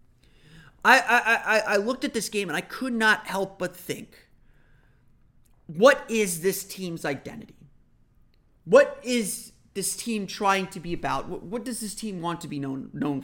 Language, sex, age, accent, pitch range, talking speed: English, male, 30-49, American, 145-220 Hz, 170 wpm